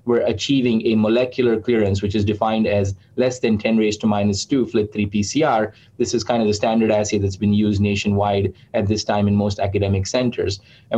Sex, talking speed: male, 200 wpm